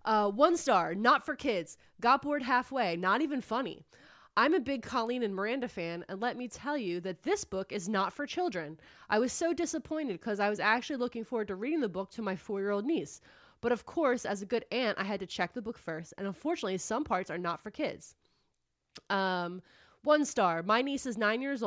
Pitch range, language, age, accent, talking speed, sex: 200-255 Hz, English, 20-39, American, 220 wpm, female